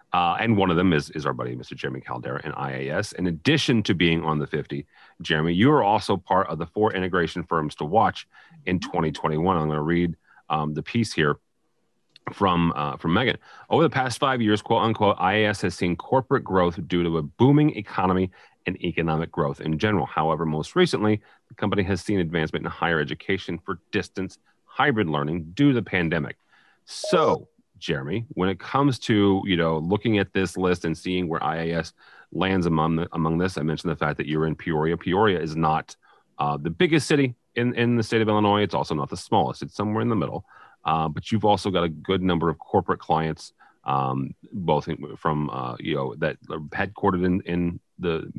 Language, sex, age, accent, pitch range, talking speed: English, male, 30-49, American, 80-105 Hz, 200 wpm